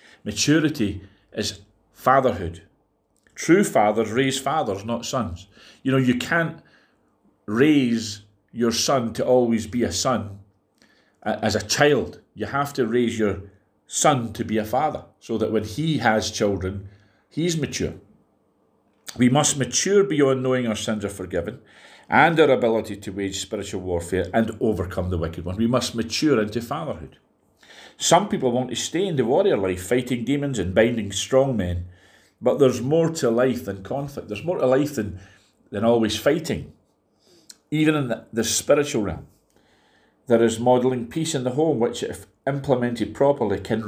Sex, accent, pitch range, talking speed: male, British, 105-130 Hz, 160 wpm